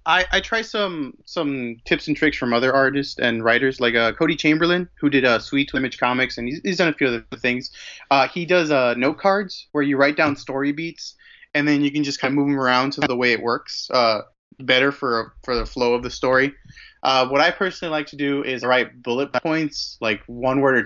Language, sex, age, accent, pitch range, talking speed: English, male, 20-39, American, 125-150 Hz, 235 wpm